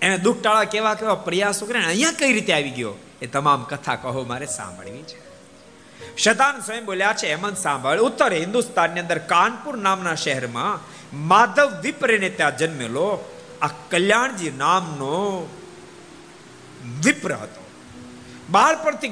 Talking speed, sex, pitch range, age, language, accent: 65 wpm, male, 130-205 Hz, 50-69, Gujarati, native